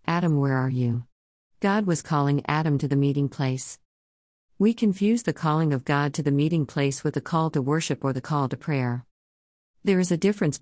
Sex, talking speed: female, 205 wpm